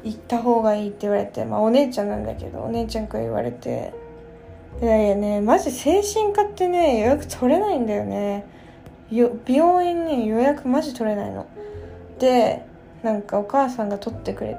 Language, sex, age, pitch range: Japanese, female, 20-39, 220-305 Hz